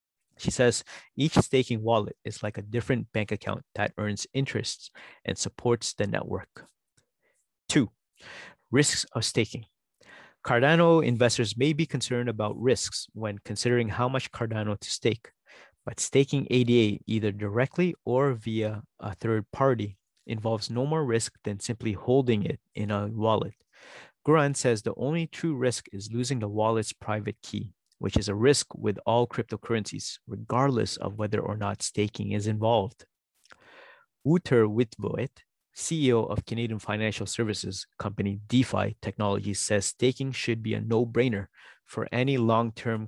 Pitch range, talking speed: 105-125 Hz, 145 wpm